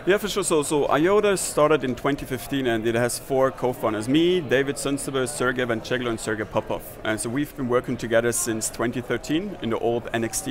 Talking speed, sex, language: 195 wpm, male, English